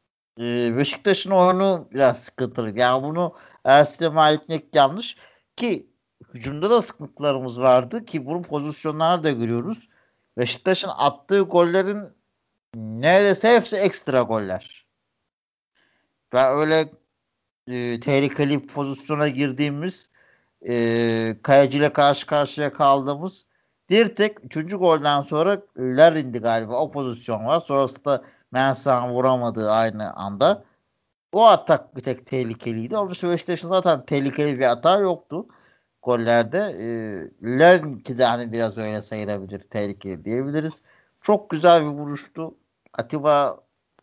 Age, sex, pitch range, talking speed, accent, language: 60-79, male, 120-160 Hz, 110 wpm, native, Turkish